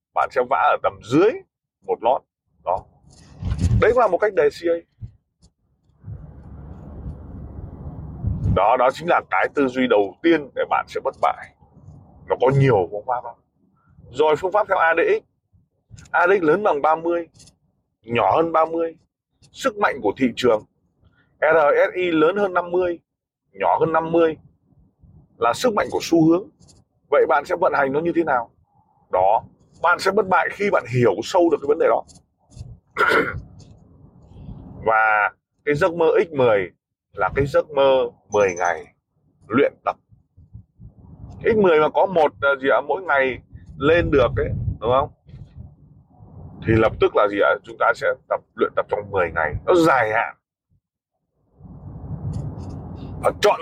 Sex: male